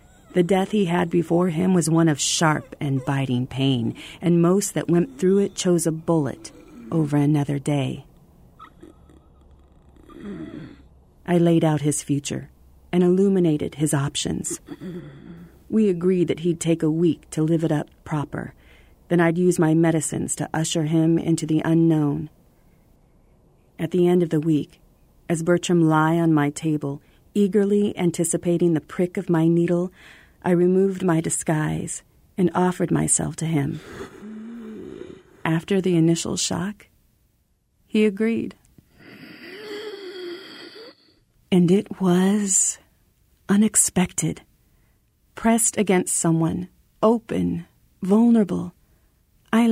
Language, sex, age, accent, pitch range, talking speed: English, female, 40-59, American, 155-205 Hz, 120 wpm